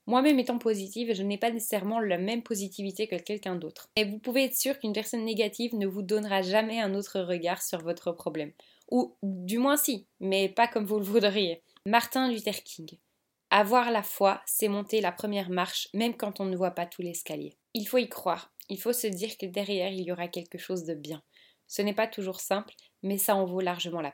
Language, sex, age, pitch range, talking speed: French, female, 20-39, 190-235 Hz, 220 wpm